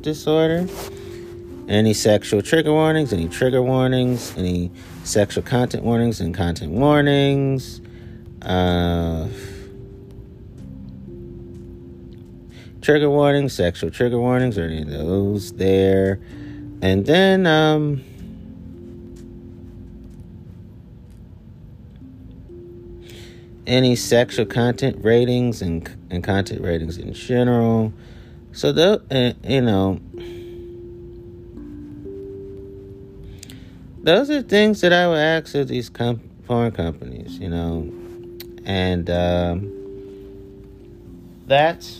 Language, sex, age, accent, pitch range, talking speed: English, male, 30-49, American, 95-130 Hz, 85 wpm